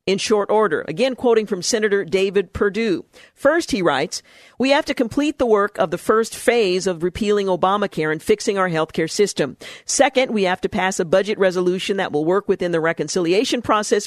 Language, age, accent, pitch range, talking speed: English, 50-69, American, 180-230 Hz, 195 wpm